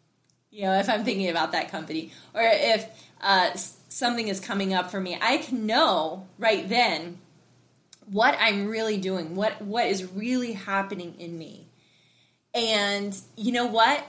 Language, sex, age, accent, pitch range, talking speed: English, female, 20-39, American, 195-265 Hz, 160 wpm